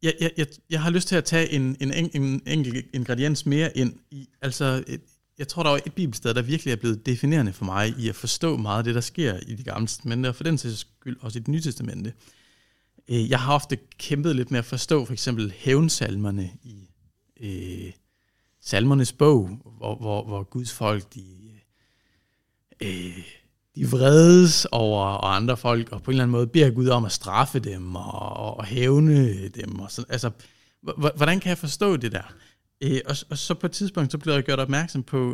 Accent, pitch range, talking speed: native, 105-140 Hz, 190 wpm